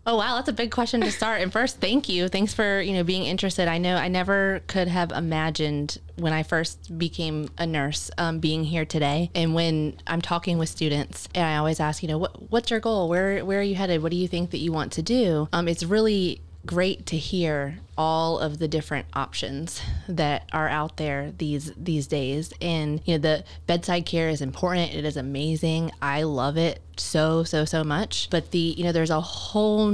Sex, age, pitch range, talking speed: female, 20-39, 150-175 Hz, 215 wpm